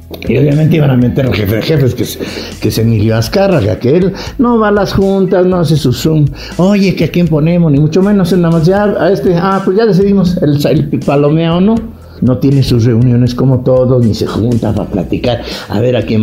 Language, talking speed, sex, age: English, 220 wpm, male, 60-79